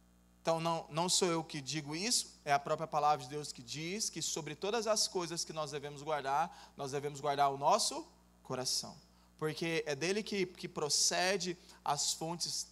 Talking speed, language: 185 wpm, Portuguese